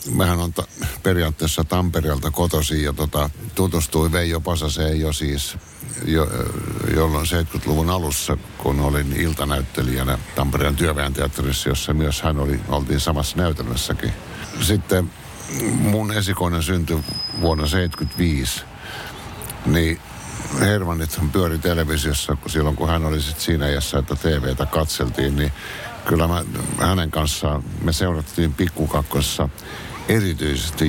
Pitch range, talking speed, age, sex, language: 75-90 Hz, 115 wpm, 60-79, male, Finnish